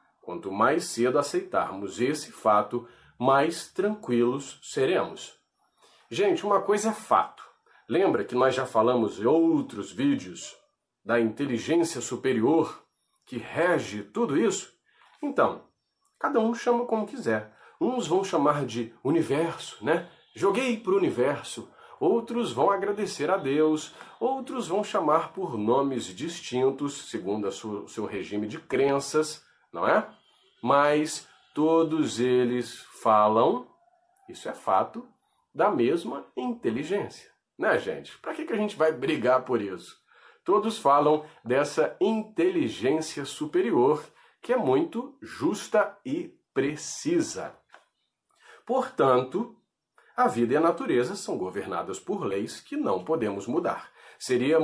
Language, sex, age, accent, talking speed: Portuguese, male, 40-59, Brazilian, 120 wpm